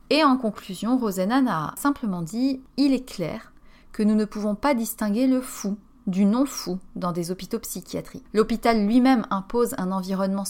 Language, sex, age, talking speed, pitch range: French, female, 30-49, 165 wpm, 185-235 Hz